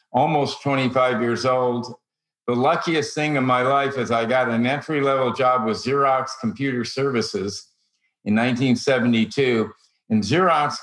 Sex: male